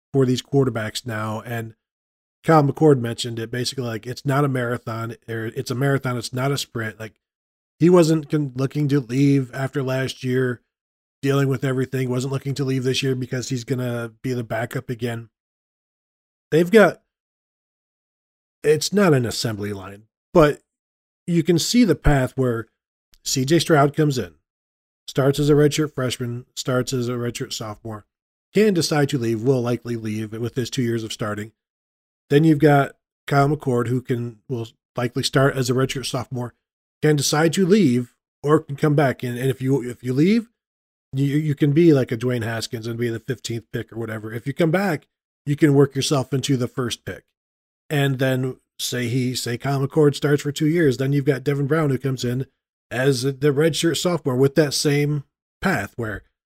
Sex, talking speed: male, 180 wpm